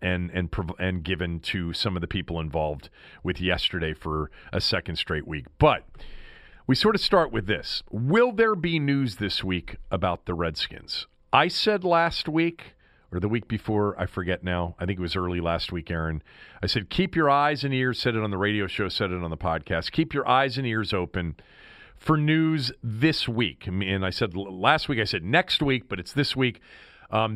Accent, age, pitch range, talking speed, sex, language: American, 40-59, 95-140 Hz, 205 wpm, male, English